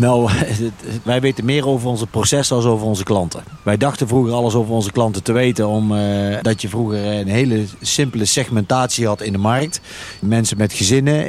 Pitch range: 100-120 Hz